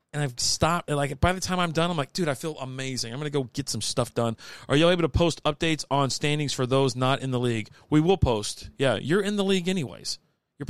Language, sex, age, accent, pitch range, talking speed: English, male, 40-59, American, 120-160 Hz, 260 wpm